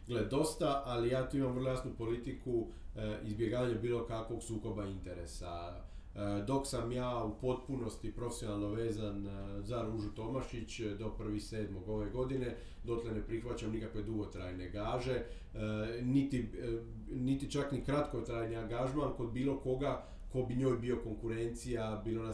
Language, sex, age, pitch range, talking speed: Croatian, male, 40-59, 110-125 Hz, 135 wpm